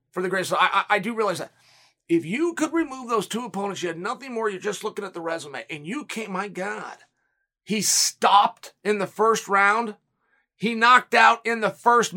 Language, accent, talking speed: English, American, 210 wpm